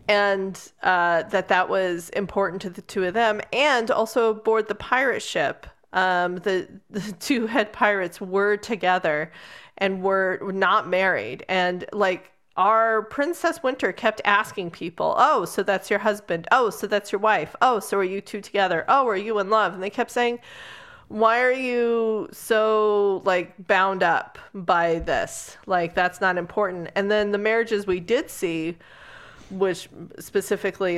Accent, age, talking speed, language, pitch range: American, 30-49, 165 wpm, English, 175-220 Hz